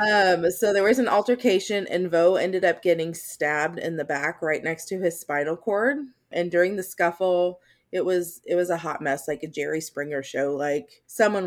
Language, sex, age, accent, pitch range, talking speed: English, female, 20-39, American, 155-185 Hz, 205 wpm